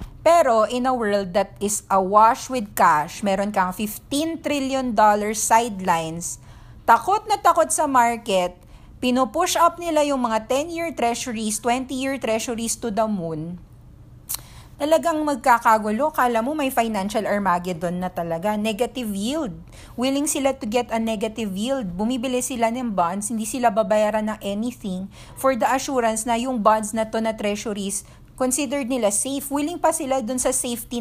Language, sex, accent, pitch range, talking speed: English, female, Filipino, 210-275 Hz, 150 wpm